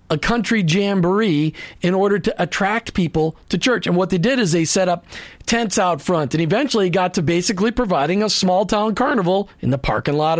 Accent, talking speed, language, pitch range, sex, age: American, 200 wpm, English, 165-210 Hz, male, 40-59